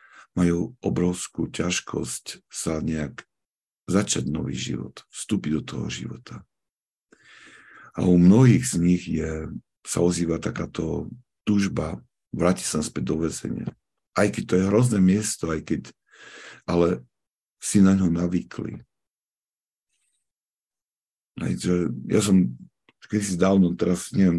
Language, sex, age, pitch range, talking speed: Slovak, male, 50-69, 85-95 Hz, 115 wpm